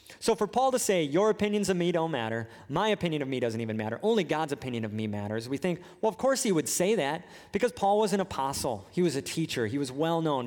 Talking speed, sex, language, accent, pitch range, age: 260 wpm, male, English, American, 135-200 Hz, 30-49